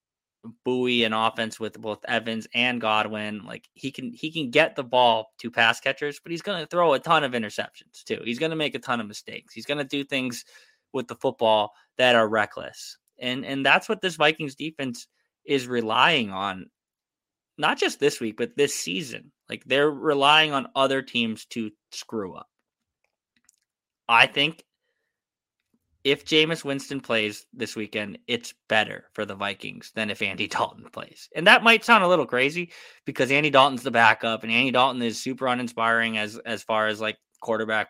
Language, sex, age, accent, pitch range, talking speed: English, male, 20-39, American, 115-140 Hz, 185 wpm